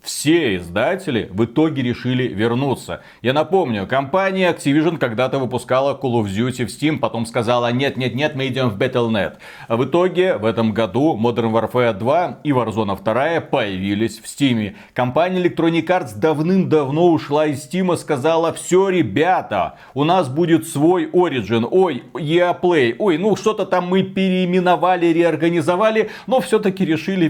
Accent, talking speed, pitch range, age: native, 145 wpm, 120-165 Hz, 30-49